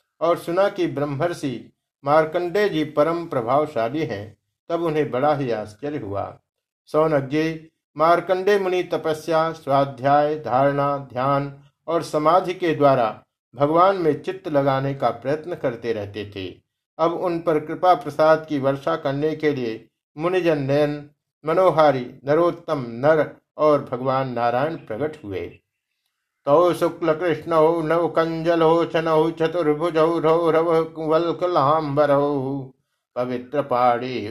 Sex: male